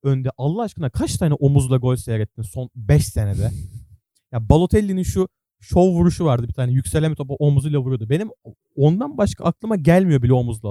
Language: Turkish